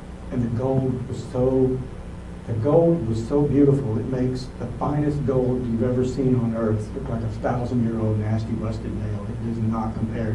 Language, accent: English, American